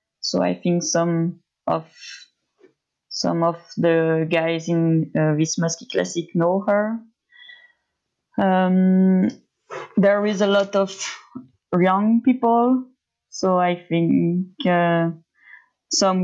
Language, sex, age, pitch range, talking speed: English, female, 20-39, 175-210 Hz, 105 wpm